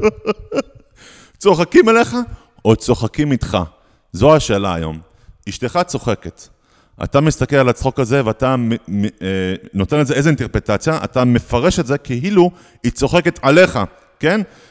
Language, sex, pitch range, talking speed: English, male, 105-175 Hz, 90 wpm